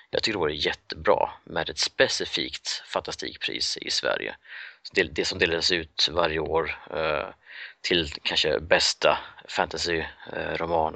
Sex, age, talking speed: male, 30-49, 115 wpm